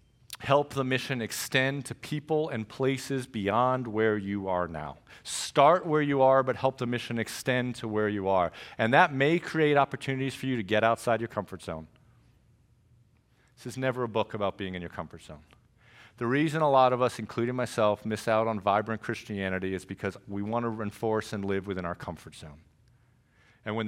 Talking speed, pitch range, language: 195 wpm, 105-130 Hz, English